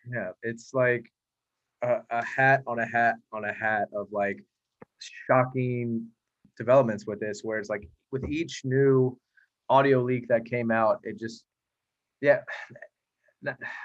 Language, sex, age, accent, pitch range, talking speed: English, male, 20-39, American, 115-130 Hz, 140 wpm